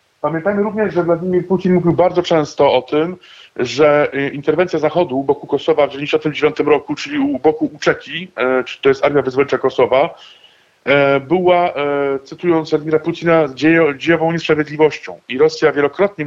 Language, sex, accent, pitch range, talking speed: Polish, male, native, 140-170 Hz, 160 wpm